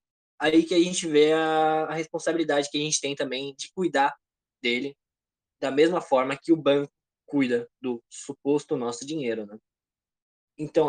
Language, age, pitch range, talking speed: Portuguese, 20-39, 130-165 Hz, 160 wpm